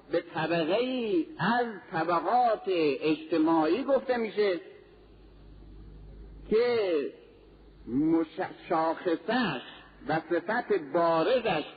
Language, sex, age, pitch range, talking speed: Persian, male, 50-69, 185-270 Hz, 75 wpm